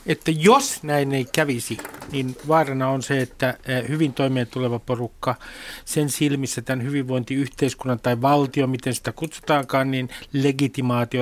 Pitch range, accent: 135-170 Hz, native